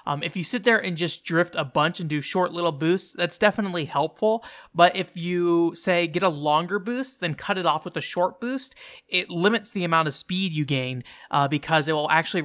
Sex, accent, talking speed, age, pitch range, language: male, American, 225 wpm, 30-49, 140-175 Hz, English